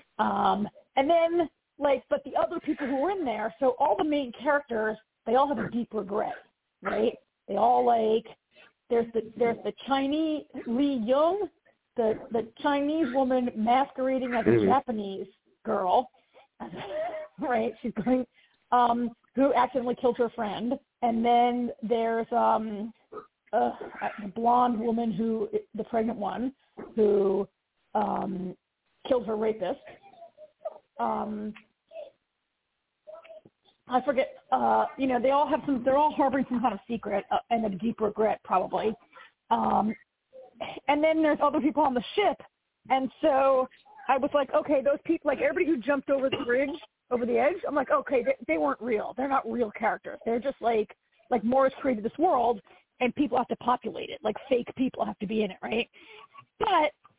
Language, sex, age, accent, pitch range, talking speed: English, female, 40-59, American, 230-290 Hz, 160 wpm